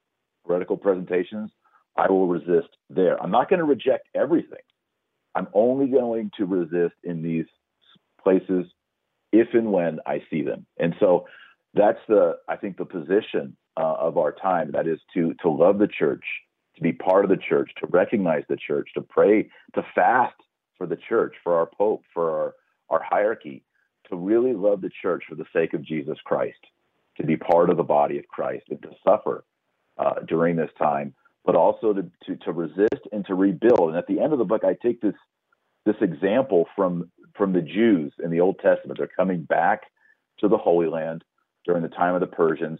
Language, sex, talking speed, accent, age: English, male, 190 wpm, American, 40-59